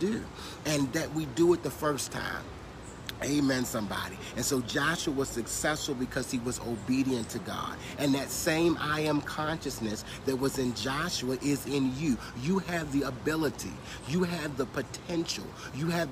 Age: 40-59